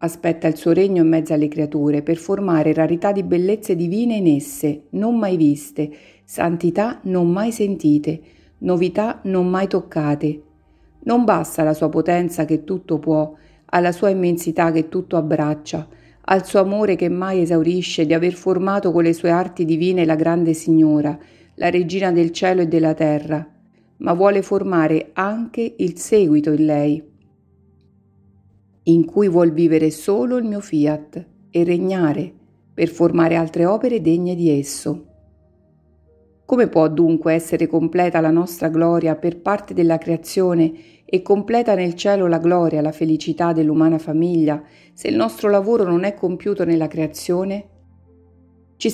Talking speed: 150 wpm